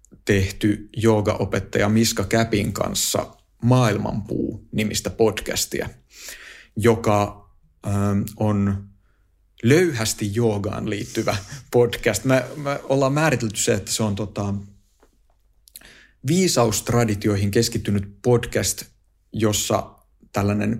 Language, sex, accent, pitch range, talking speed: Finnish, male, native, 100-120 Hz, 85 wpm